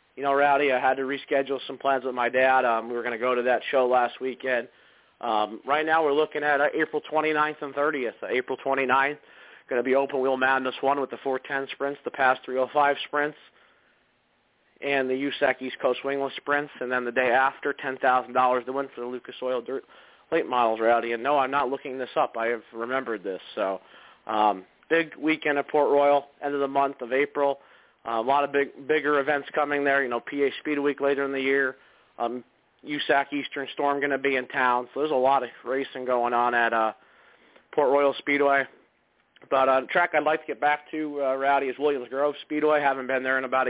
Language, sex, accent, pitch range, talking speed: English, male, American, 125-145 Hz, 220 wpm